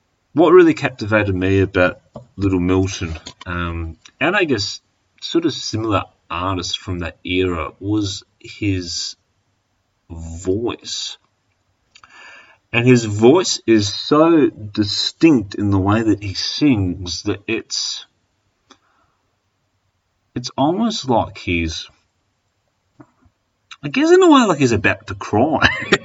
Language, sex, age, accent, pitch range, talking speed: English, male, 30-49, Australian, 90-115 Hz, 115 wpm